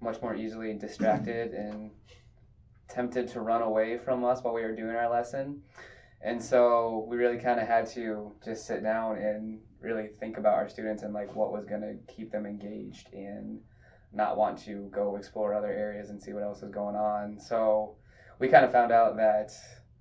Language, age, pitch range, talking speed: English, 20-39, 105-110 Hz, 190 wpm